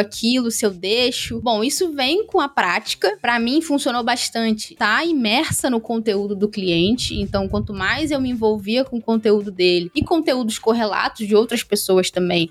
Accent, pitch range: Brazilian, 210-270 Hz